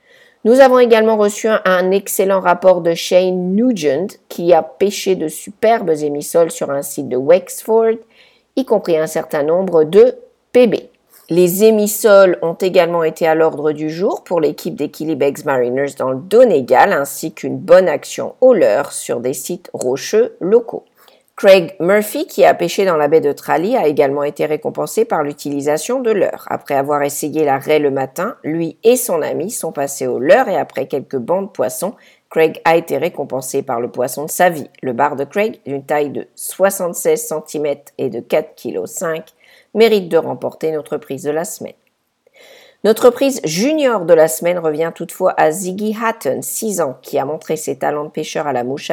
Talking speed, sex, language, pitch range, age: 185 wpm, female, English, 155-225 Hz, 50-69